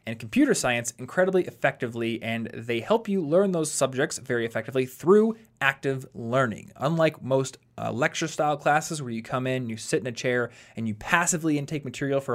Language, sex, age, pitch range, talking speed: English, male, 20-39, 115-155 Hz, 180 wpm